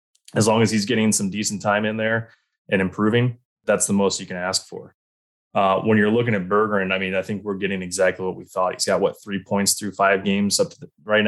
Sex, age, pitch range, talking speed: male, 20-39, 95-105 Hz, 250 wpm